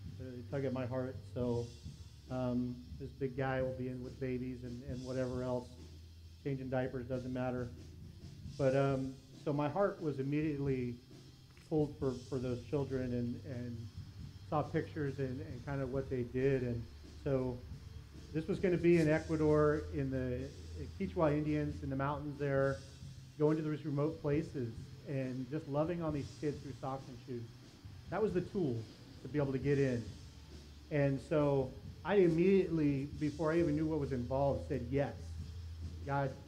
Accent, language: American, English